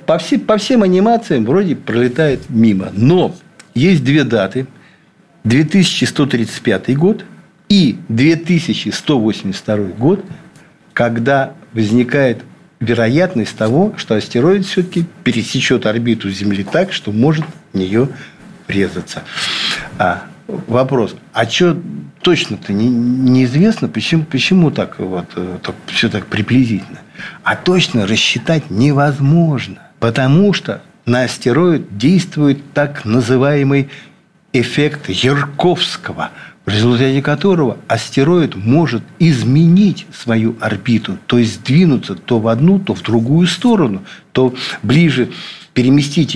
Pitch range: 115-175 Hz